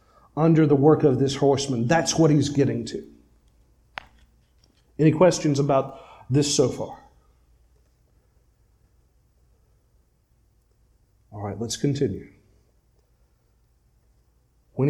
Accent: American